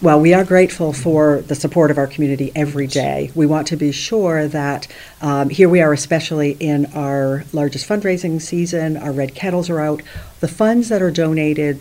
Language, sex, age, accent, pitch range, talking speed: English, female, 50-69, American, 140-160 Hz, 195 wpm